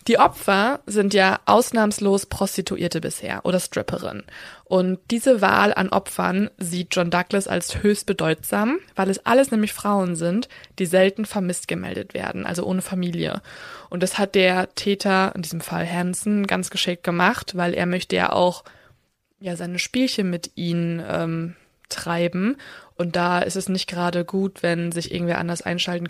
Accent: German